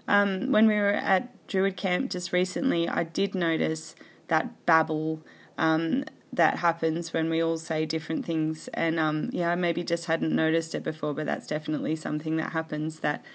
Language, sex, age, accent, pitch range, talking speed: English, female, 20-39, Australian, 155-170 Hz, 180 wpm